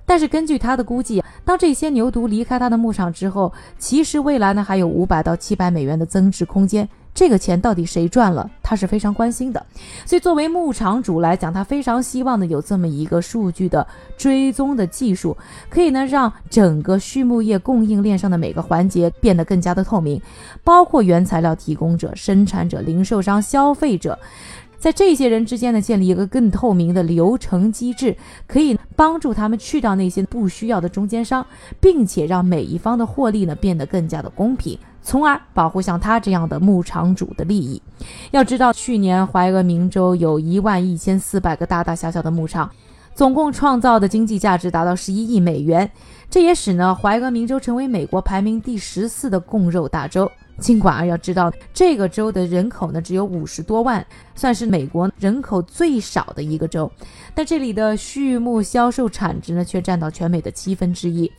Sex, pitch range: female, 175-240 Hz